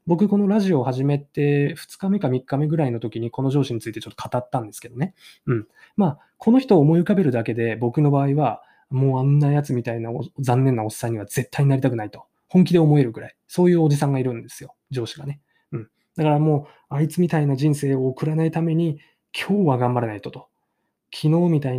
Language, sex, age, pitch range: Japanese, male, 20-39, 125-160 Hz